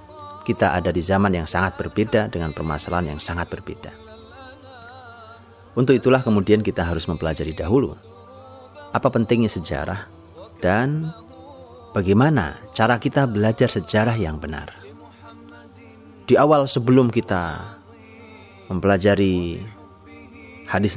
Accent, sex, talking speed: native, male, 105 wpm